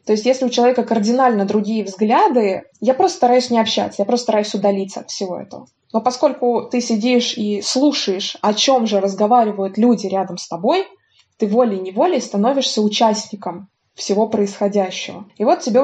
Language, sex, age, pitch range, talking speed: Russian, female, 20-39, 205-245 Hz, 165 wpm